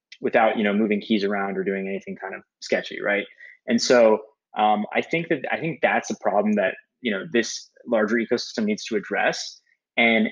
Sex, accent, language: male, American, English